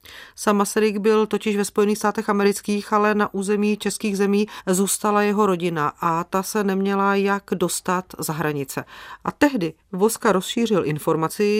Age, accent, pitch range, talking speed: 40-59, native, 160-210 Hz, 150 wpm